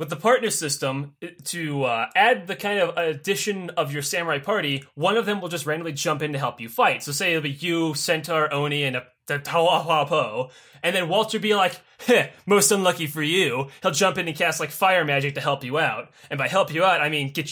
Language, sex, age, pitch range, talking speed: English, male, 20-39, 145-200 Hz, 230 wpm